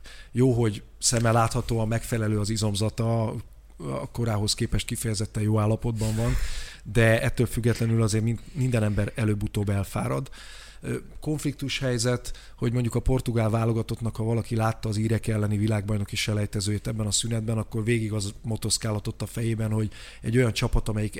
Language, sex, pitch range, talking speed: Hungarian, male, 110-125 Hz, 150 wpm